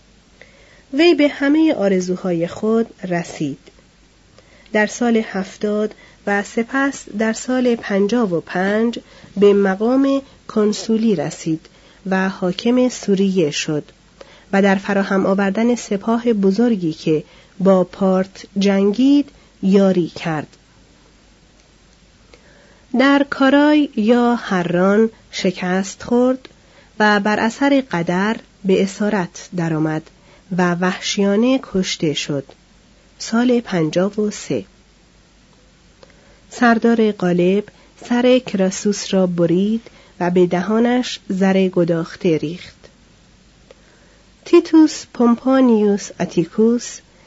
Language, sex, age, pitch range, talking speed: Persian, female, 40-59, 185-235 Hz, 90 wpm